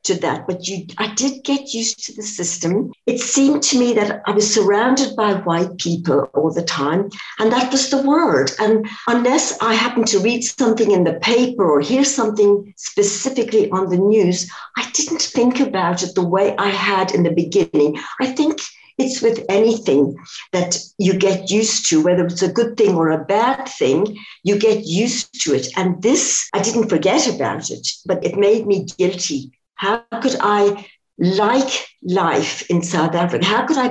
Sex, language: female, English